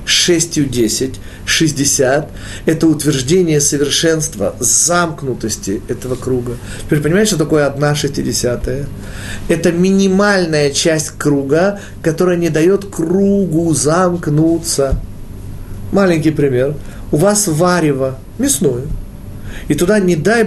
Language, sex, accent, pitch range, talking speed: Russian, male, native, 130-185 Hz, 100 wpm